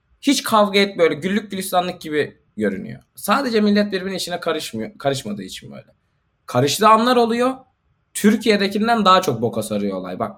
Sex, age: male, 20-39